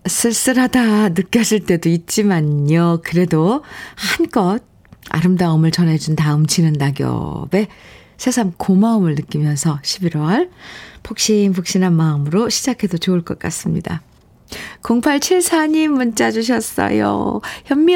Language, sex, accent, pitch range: Korean, female, native, 180-245 Hz